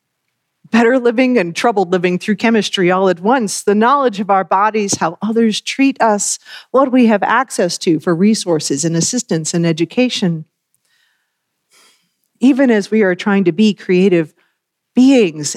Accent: American